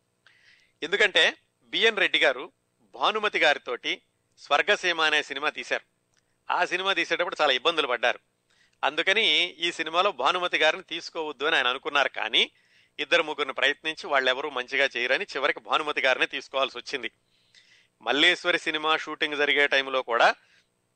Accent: native